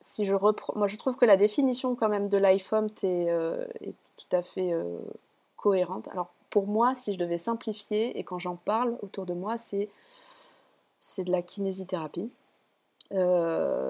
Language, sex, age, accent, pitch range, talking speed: French, female, 20-39, French, 180-210 Hz, 175 wpm